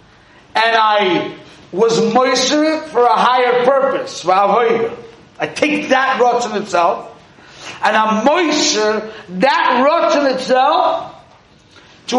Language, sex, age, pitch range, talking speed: English, male, 50-69, 220-305 Hz, 110 wpm